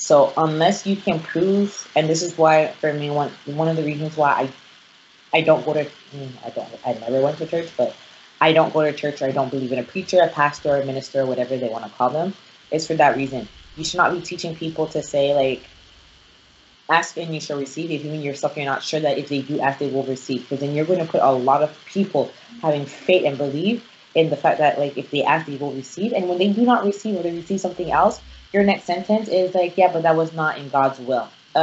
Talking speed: 260 wpm